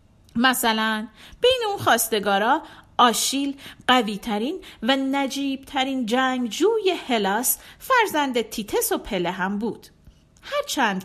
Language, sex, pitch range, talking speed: Persian, female, 205-310 Hz, 100 wpm